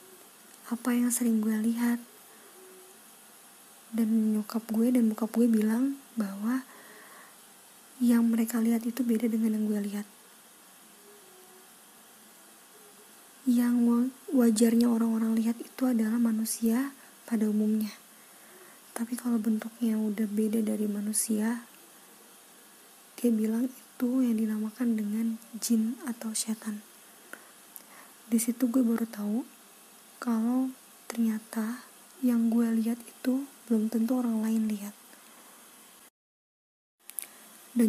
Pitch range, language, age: 220-245 Hz, Indonesian, 20-39